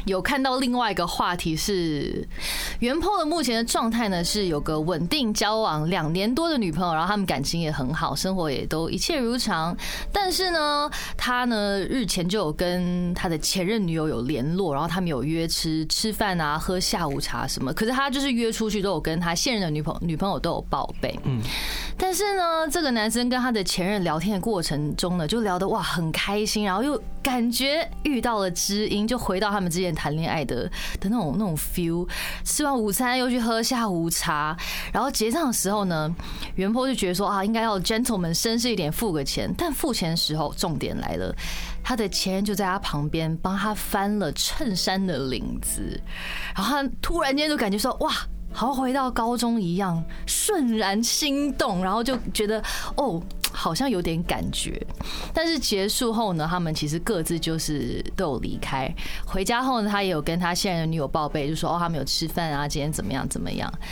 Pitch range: 165-235 Hz